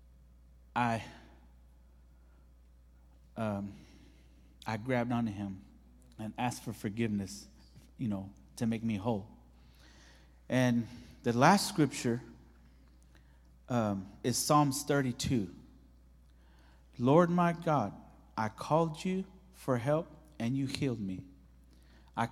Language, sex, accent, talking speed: English, male, American, 100 wpm